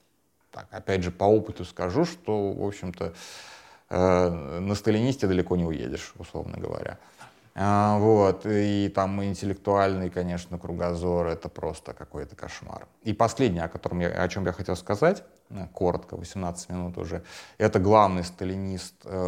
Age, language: 30-49, Russian